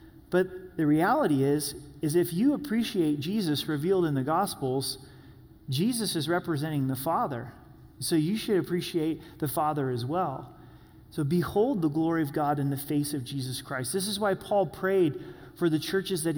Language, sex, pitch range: English, male, 145-175 Hz